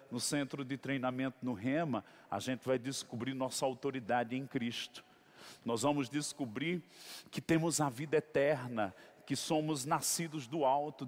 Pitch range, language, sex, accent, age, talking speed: 135-180 Hz, Portuguese, male, Brazilian, 50-69, 145 wpm